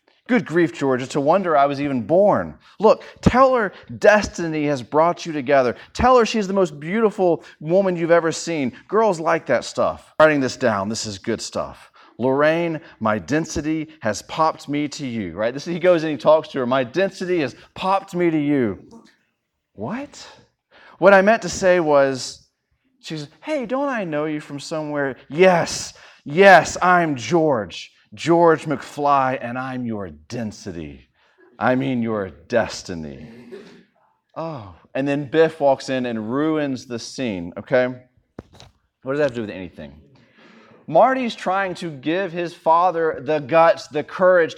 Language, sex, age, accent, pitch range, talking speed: English, male, 30-49, American, 125-175 Hz, 160 wpm